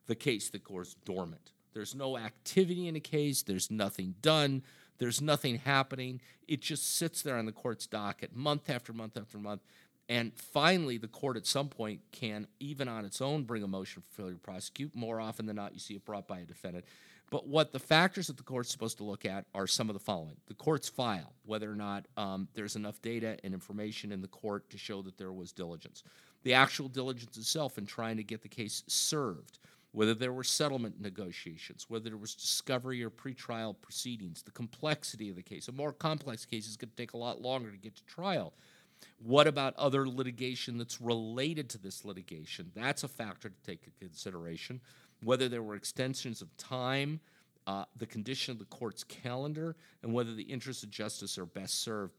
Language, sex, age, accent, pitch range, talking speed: English, male, 50-69, American, 105-135 Hz, 205 wpm